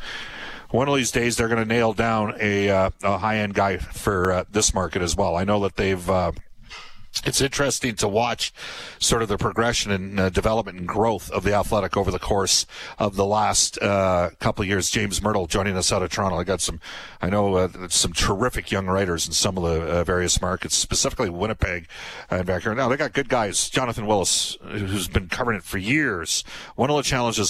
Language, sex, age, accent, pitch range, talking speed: English, male, 40-59, American, 90-110 Hz, 210 wpm